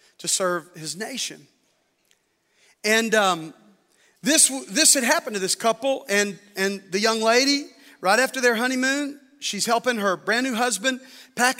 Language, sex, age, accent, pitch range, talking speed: English, male, 40-59, American, 220-310 Hz, 150 wpm